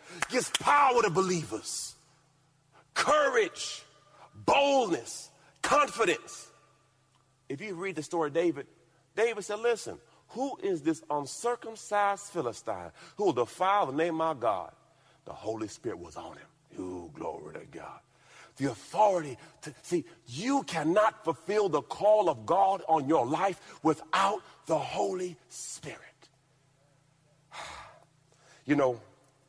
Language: English